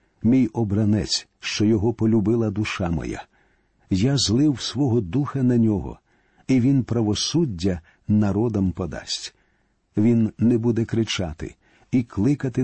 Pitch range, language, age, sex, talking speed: 100-130 Hz, Ukrainian, 50-69, male, 115 wpm